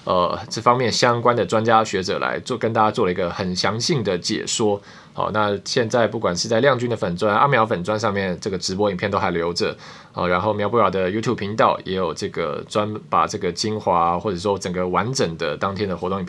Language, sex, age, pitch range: Chinese, male, 20-39, 90-110 Hz